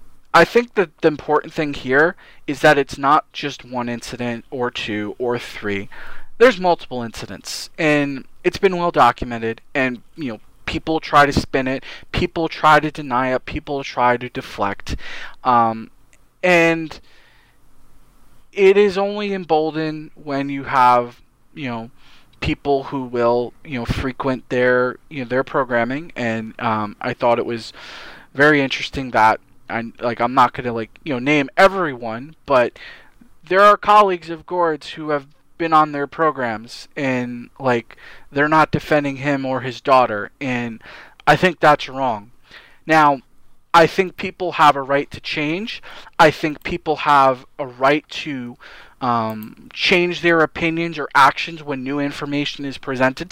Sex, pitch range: male, 125-160 Hz